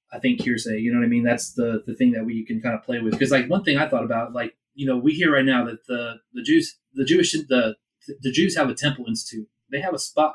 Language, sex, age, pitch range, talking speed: English, male, 30-49, 120-150 Hz, 290 wpm